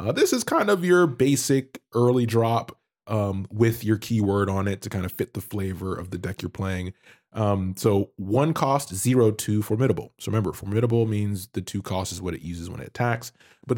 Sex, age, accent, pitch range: male, 20-39, American, 95-120 Hz